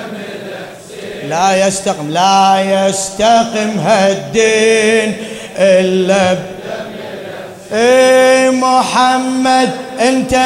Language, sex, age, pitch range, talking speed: Arabic, male, 30-49, 195-280 Hz, 55 wpm